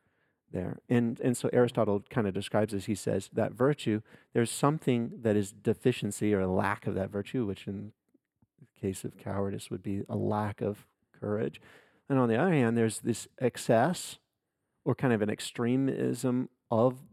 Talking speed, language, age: 175 wpm, English, 40-59